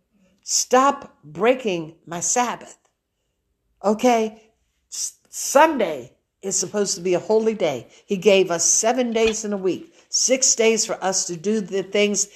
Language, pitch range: English, 185-255 Hz